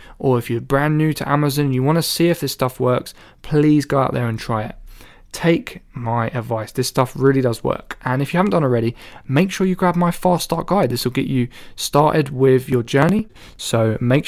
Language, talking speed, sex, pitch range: English, 230 wpm, male, 120-145 Hz